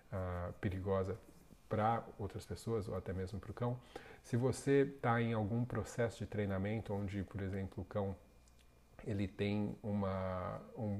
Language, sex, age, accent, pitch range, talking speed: Portuguese, male, 40-59, Brazilian, 100-115 Hz, 155 wpm